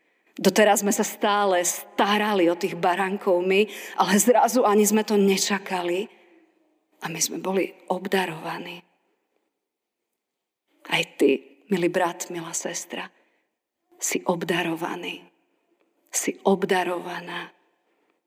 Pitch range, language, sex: 185-235 Hz, Slovak, female